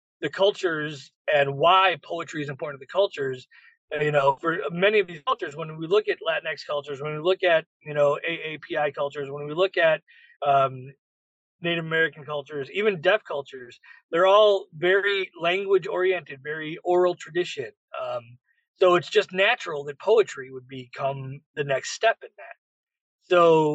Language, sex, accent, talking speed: English, male, American, 165 wpm